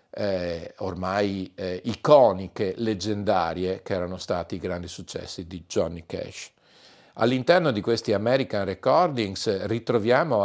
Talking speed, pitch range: 115 wpm, 90-115 Hz